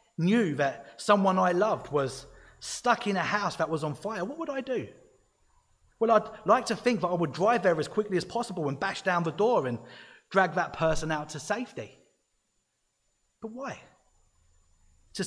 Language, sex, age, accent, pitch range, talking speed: English, male, 30-49, British, 140-200 Hz, 185 wpm